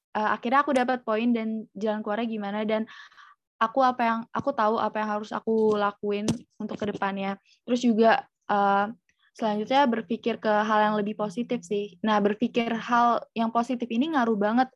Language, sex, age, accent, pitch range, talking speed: Indonesian, female, 20-39, native, 205-245 Hz, 165 wpm